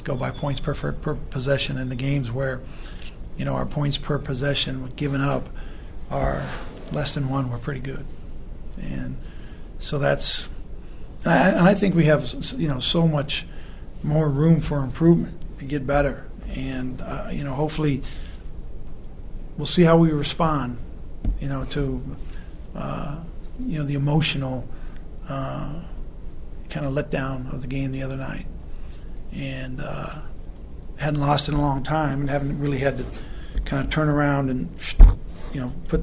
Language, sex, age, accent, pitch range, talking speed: English, male, 40-59, American, 130-150 Hz, 160 wpm